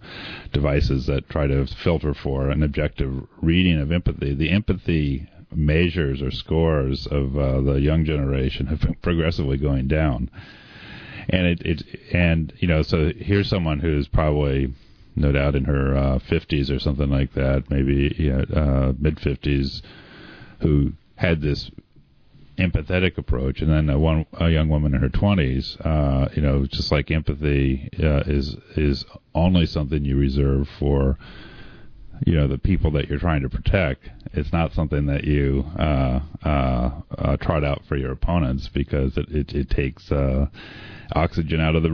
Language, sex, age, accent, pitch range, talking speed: English, male, 40-59, American, 70-85 Hz, 165 wpm